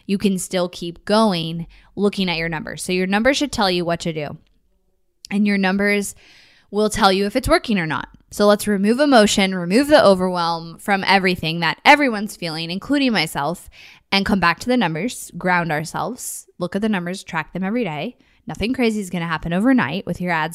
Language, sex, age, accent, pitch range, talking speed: English, female, 10-29, American, 175-215 Hz, 200 wpm